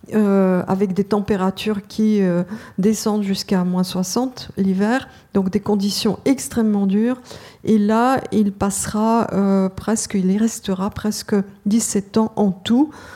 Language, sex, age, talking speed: French, female, 50-69, 135 wpm